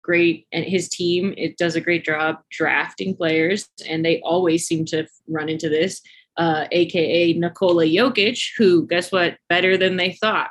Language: English